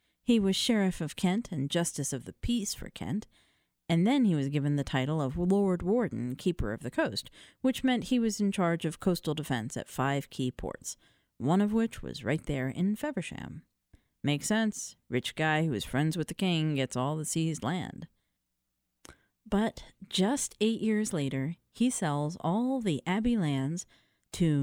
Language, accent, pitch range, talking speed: English, American, 140-210 Hz, 180 wpm